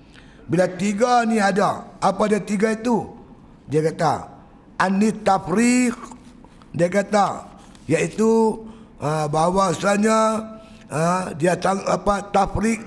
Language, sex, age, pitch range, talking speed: Malay, male, 60-79, 175-225 Hz, 95 wpm